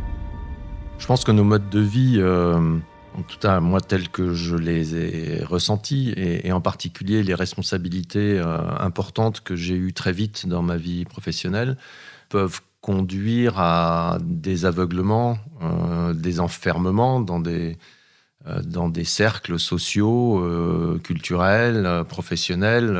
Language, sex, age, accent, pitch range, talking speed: French, male, 40-59, French, 85-105 Hz, 140 wpm